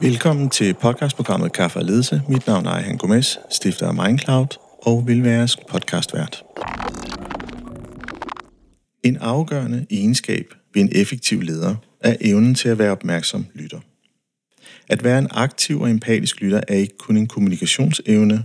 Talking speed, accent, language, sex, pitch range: 140 wpm, native, Danish, male, 105-130 Hz